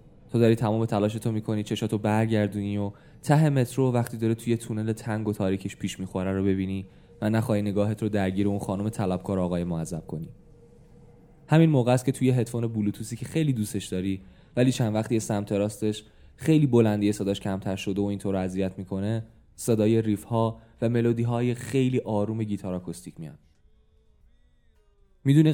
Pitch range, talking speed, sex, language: 95-115 Hz, 165 wpm, male, Persian